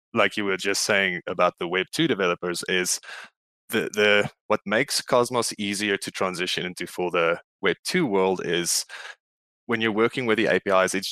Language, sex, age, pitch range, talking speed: English, male, 20-39, 95-110 Hz, 165 wpm